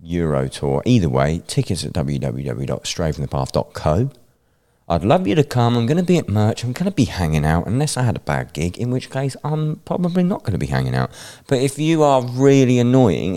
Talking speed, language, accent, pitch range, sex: 210 wpm, English, British, 75-125 Hz, male